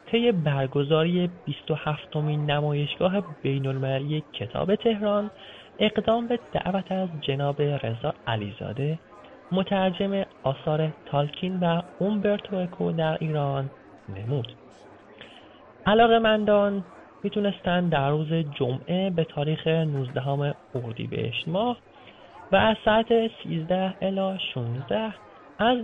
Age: 30-49